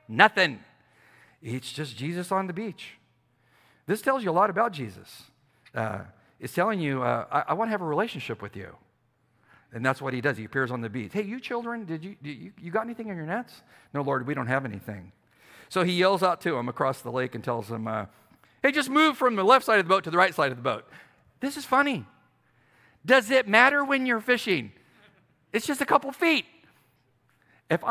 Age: 50-69